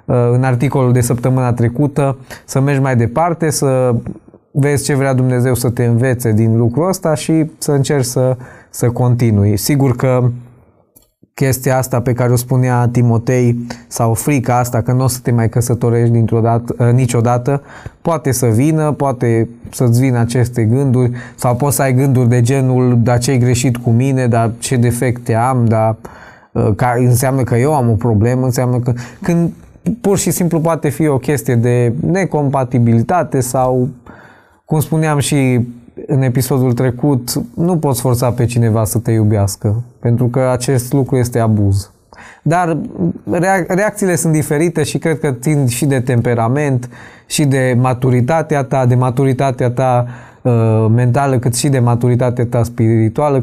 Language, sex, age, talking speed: Romanian, male, 20-39, 155 wpm